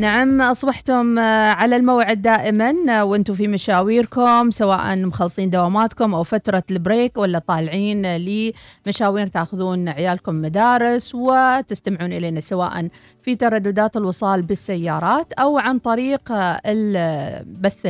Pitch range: 185-240 Hz